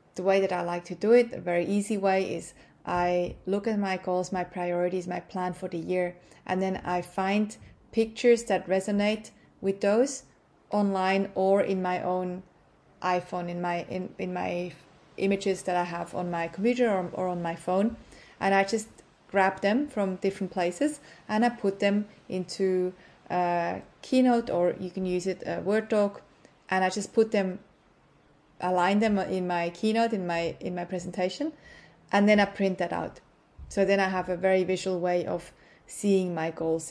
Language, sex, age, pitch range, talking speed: English, female, 30-49, 180-205 Hz, 185 wpm